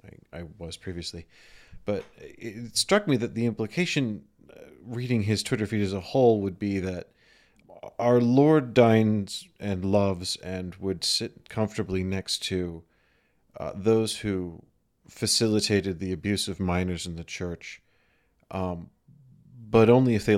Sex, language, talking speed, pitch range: male, English, 140 wpm, 90-110 Hz